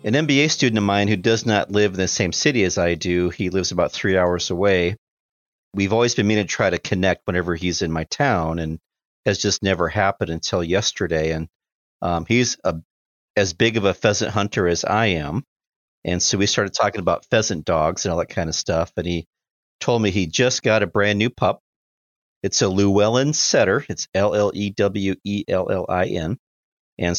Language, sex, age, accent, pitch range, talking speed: English, male, 50-69, American, 85-105 Hz, 190 wpm